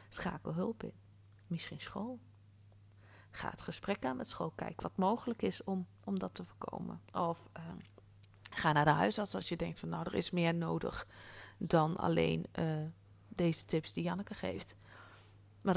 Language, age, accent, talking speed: Dutch, 40-59, Dutch, 170 wpm